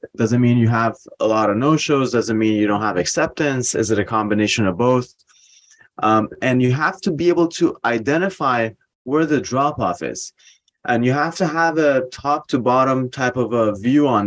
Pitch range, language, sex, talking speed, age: 110-135 Hz, English, male, 200 wpm, 20-39